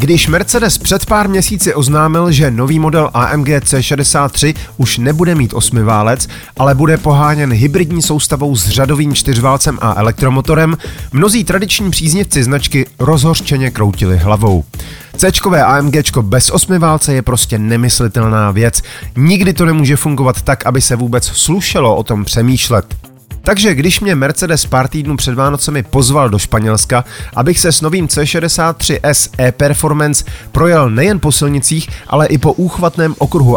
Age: 30-49